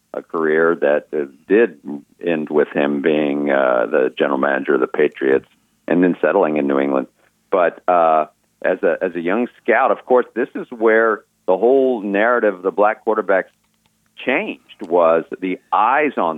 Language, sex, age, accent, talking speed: English, male, 50-69, American, 170 wpm